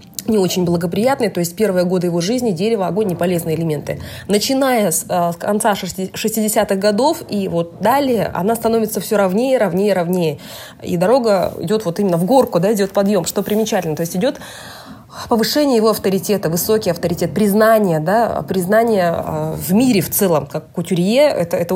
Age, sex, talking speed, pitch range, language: 20-39, female, 170 wpm, 180-230 Hz, Russian